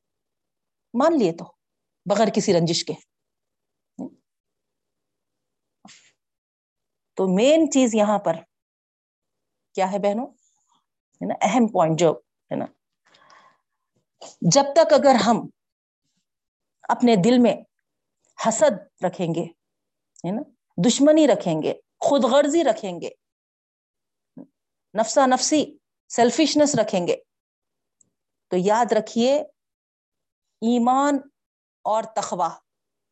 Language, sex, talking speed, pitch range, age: Urdu, female, 85 wpm, 180-280 Hz, 40-59